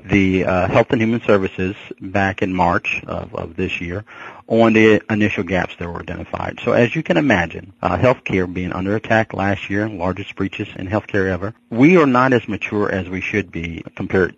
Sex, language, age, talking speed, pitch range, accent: male, English, 40-59, 195 wpm, 90-110 Hz, American